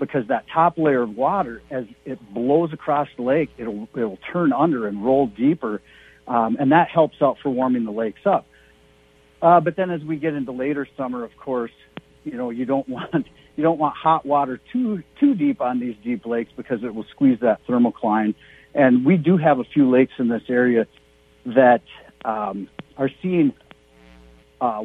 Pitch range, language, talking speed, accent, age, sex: 115-145 Hz, English, 190 wpm, American, 60-79, male